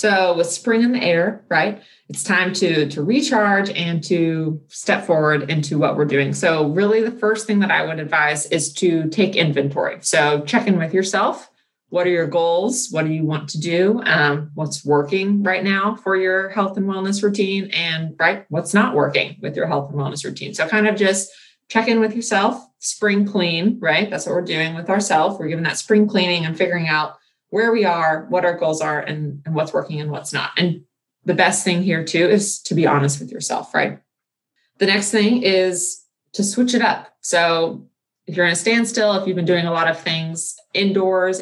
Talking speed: 210 wpm